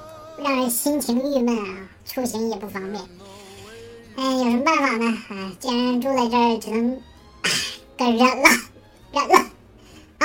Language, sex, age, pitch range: Chinese, male, 10-29, 215-275 Hz